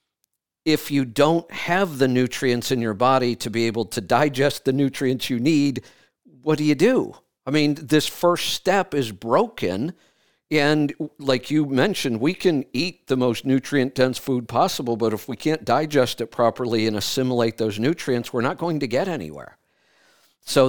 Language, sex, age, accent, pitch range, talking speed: English, male, 50-69, American, 105-135 Hz, 170 wpm